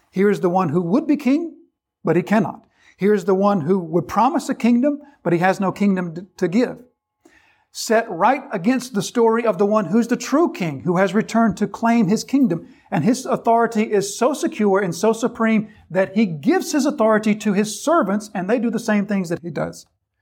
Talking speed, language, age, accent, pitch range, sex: 210 wpm, English, 50-69, American, 185-245 Hz, male